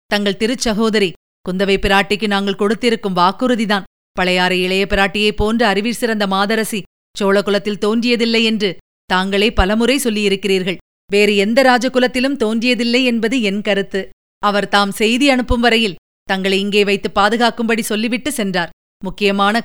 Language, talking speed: Tamil, 120 wpm